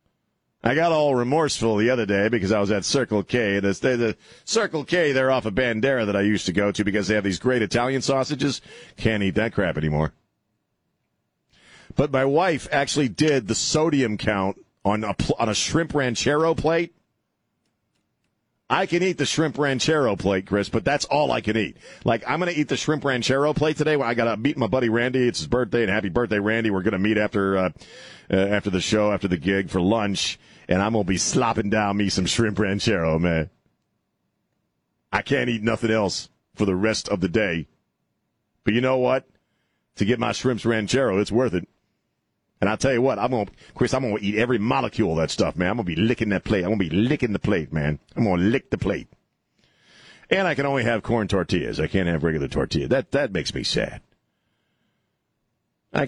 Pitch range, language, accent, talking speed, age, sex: 100-135 Hz, English, American, 215 wpm, 40-59, male